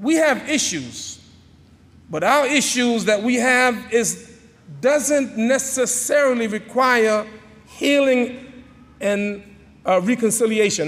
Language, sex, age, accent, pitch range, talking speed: English, male, 40-59, American, 180-245 Hz, 95 wpm